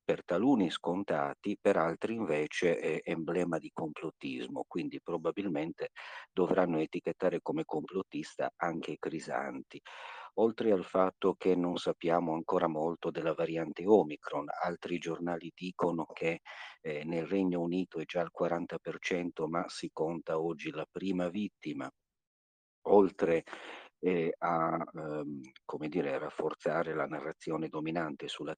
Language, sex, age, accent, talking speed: Italian, male, 50-69, native, 130 wpm